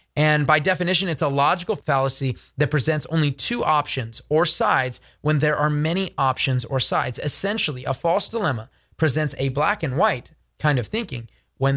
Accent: American